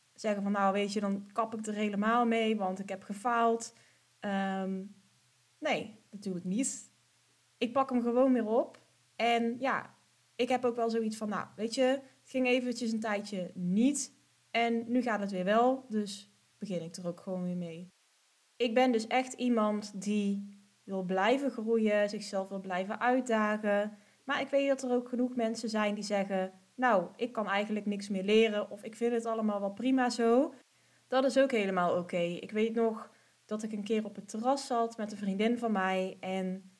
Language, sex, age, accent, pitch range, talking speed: Dutch, female, 20-39, Dutch, 200-240 Hz, 195 wpm